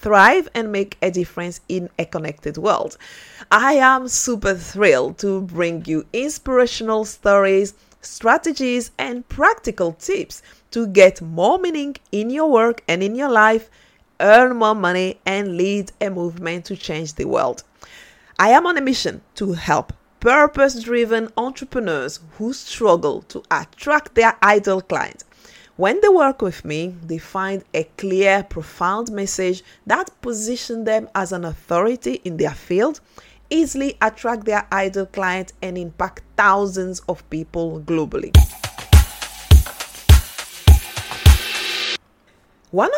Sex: female